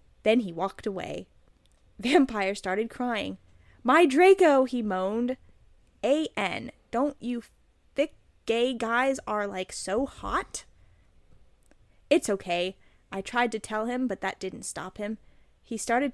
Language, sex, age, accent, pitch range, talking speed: English, female, 20-39, American, 200-285 Hz, 135 wpm